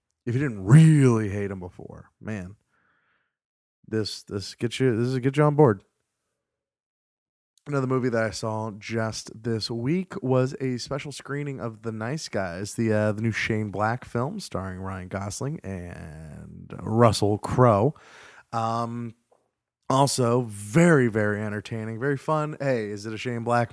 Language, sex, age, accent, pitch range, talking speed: English, male, 20-39, American, 105-120 Hz, 155 wpm